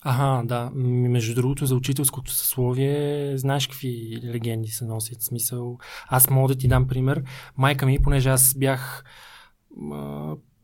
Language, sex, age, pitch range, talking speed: Bulgarian, male, 20-39, 125-155 Hz, 140 wpm